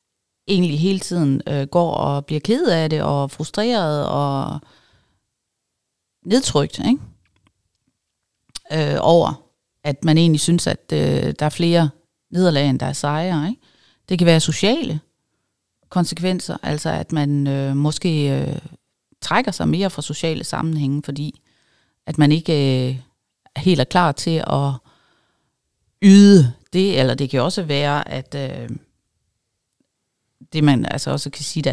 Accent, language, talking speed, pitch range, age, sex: Danish, English, 145 wpm, 145-180 Hz, 40-59, female